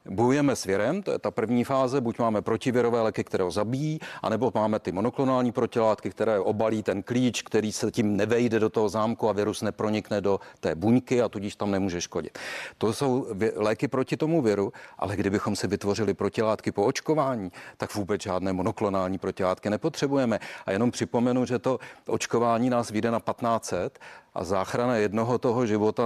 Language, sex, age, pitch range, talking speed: Czech, male, 40-59, 105-120 Hz, 175 wpm